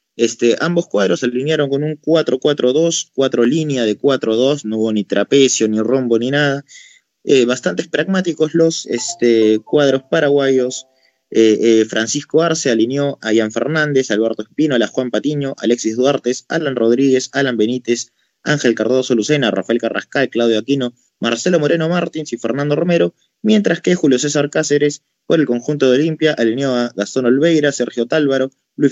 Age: 20-39